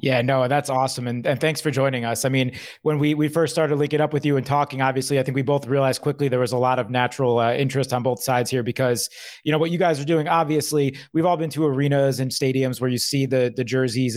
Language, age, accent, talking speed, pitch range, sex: English, 20-39, American, 270 wpm, 130-155 Hz, male